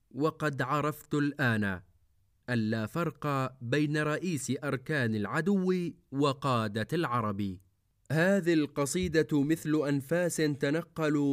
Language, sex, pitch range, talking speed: Arabic, male, 115-150 Hz, 85 wpm